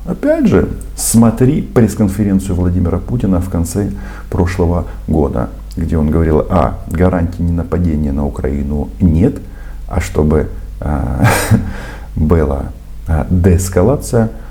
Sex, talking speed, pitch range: male, 95 wpm, 80-105 Hz